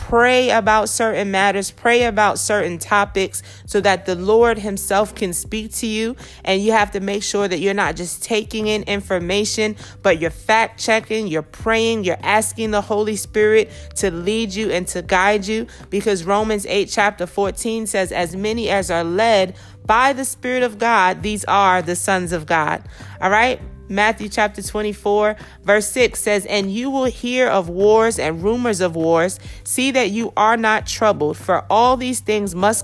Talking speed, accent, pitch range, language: 180 wpm, American, 185-225 Hz, English